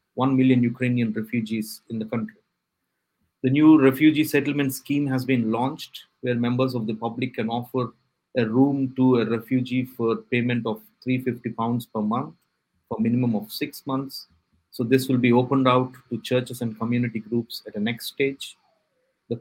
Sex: male